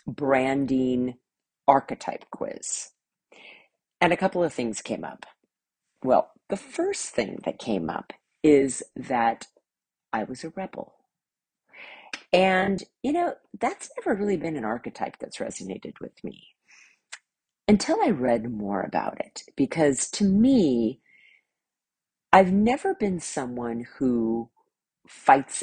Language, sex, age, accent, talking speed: English, female, 40-59, American, 120 wpm